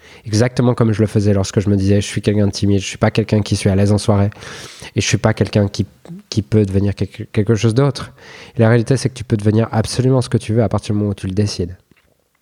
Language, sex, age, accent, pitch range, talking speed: French, male, 20-39, French, 105-125 Hz, 290 wpm